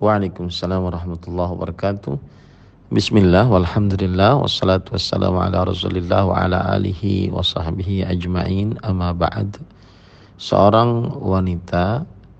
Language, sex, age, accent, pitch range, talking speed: Indonesian, male, 40-59, native, 90-100 Hz, 90 wpm